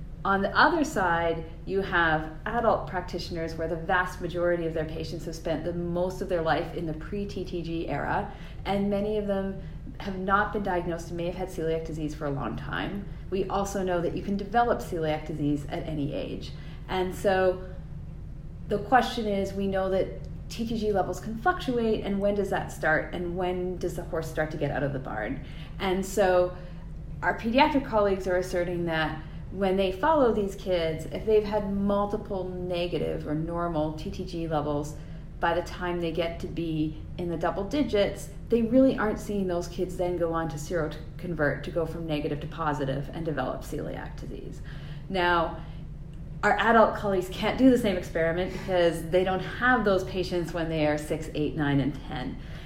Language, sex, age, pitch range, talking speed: English, female, 40-59, 160-195 Hz, 185 wpm